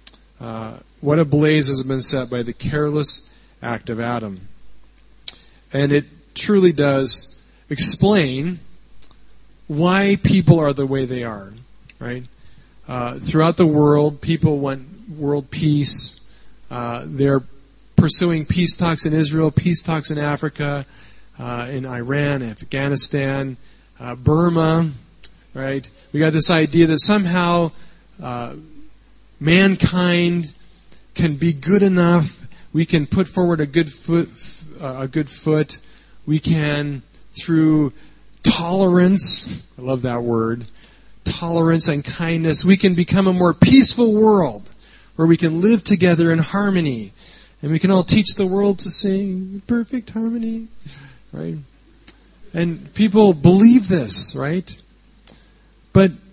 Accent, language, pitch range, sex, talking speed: American, English, 135-180 Hz, male, 125 wpm